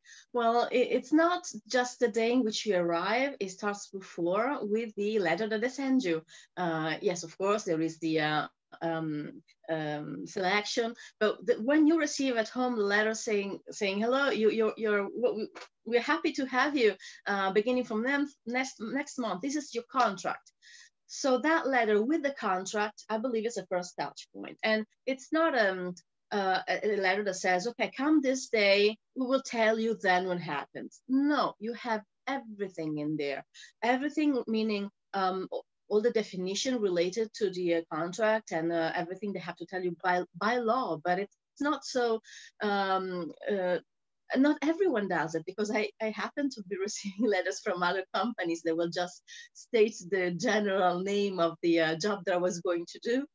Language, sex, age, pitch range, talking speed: English, female, 30-49, 185-245 Hz, 180 wpm